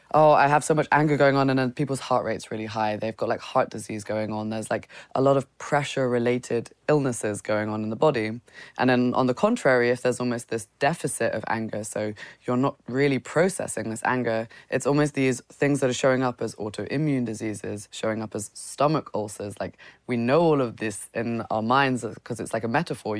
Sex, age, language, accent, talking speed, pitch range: female, 20-39, English, British, 215 wpm, 110-135 Hz